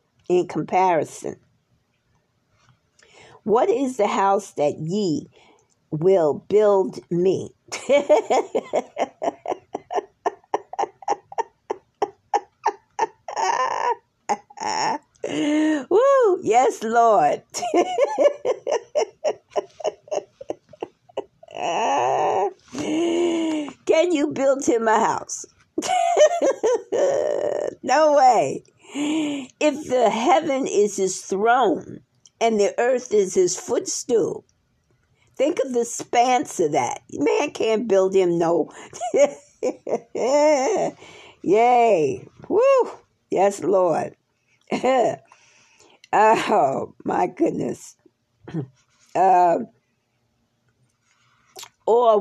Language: English